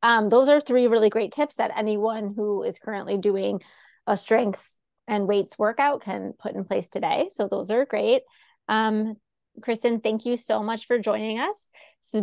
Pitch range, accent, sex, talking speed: 205-240 Hz, American, female, 185 wpm